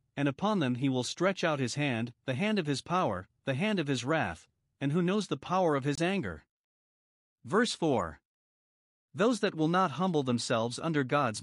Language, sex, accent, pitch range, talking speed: English, male, American, 125-175 Hz, 195 wpm